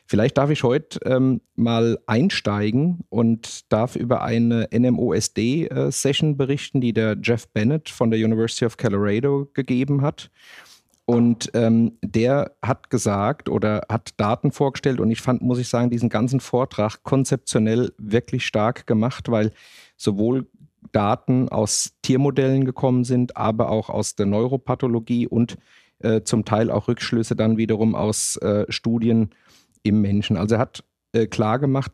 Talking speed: 145 wpm